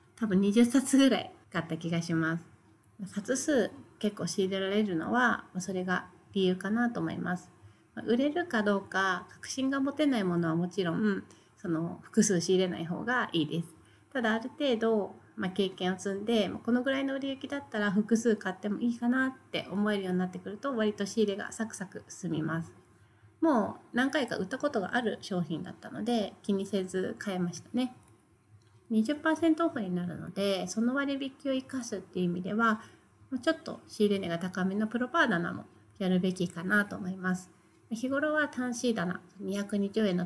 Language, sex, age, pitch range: Japanese, female, 30-49, 180-240 Hz